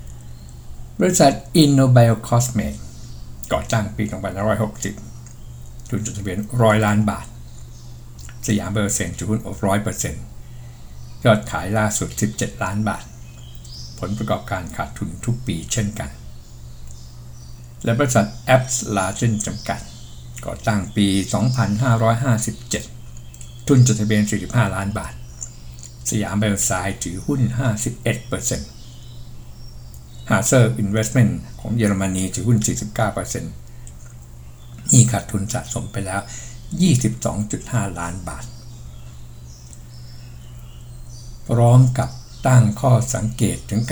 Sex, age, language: male, 60-79, Thai